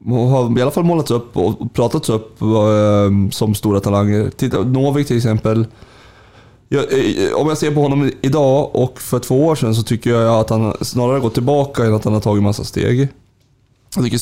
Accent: native